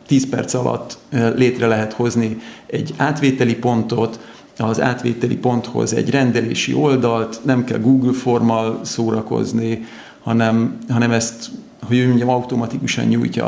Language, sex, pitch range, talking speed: Hungarian, male, 115-125 Hz, 125 wpm